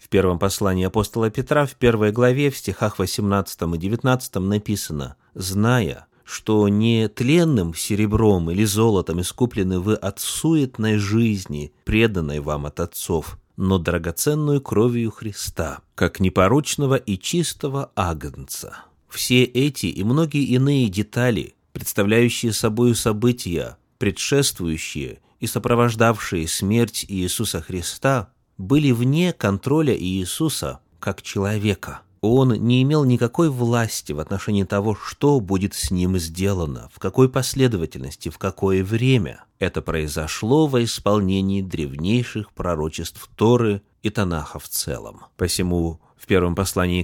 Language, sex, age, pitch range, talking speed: Russian, male, 30-49, 90-120 Hz, 120 wpm